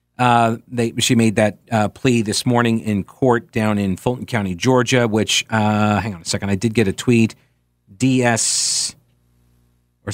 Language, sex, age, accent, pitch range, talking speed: English, male, 40-59, American, 115-145 Hz, 170 wpm